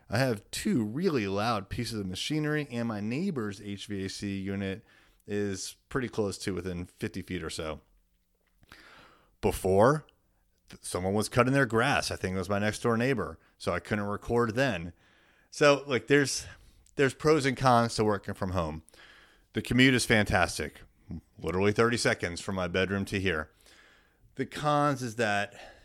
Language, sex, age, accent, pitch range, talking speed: English, male, 30-49, American, 90-120 Hz, 160 wpm